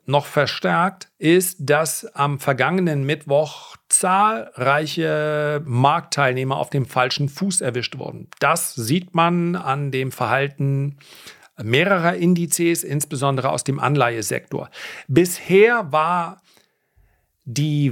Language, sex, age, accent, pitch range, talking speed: German, male, 40-59, German, 130-170 Hz, 100 wpm